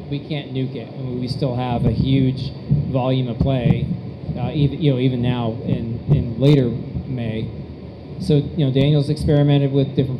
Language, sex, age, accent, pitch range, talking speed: English, male, 20-39, American, 130-150 Hz, 180 wpm